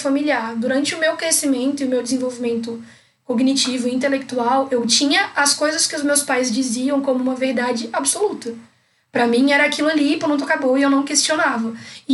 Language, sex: Portuguese, female